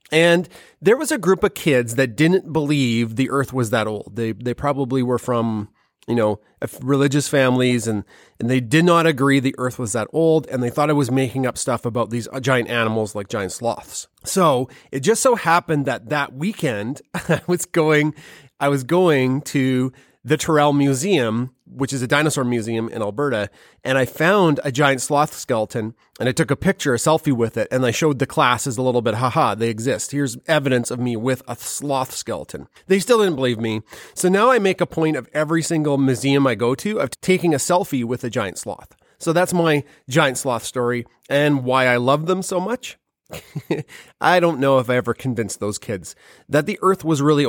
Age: 30-49